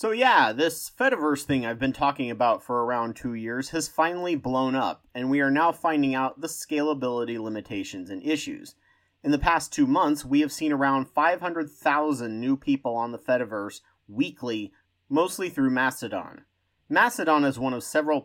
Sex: male